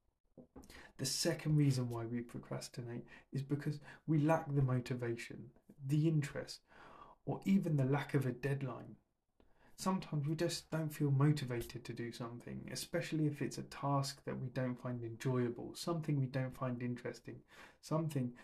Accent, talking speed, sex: British, 150 wpm, male